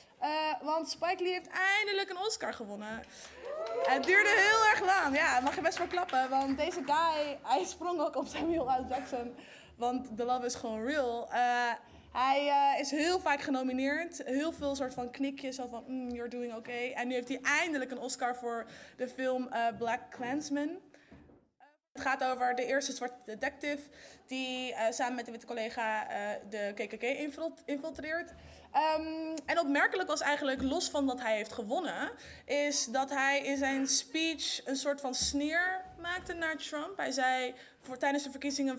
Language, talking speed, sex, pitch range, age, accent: Dutch, 180 wpm, female, 245-310 Hz, 20-39, Dutch